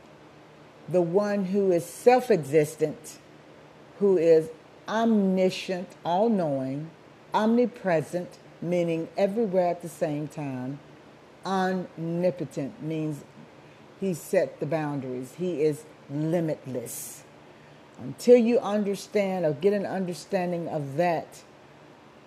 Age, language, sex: 50-69, English, female